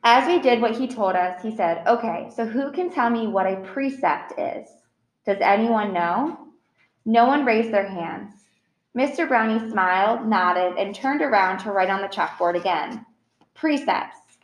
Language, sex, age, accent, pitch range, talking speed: English, female, 20-39, American, 180-235 Hz, 170 wpm